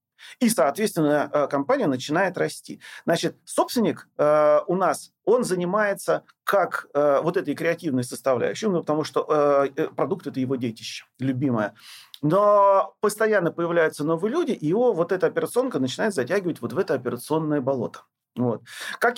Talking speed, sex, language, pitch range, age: 145 wpm, male, Russian, 150-205 Hz, 40-59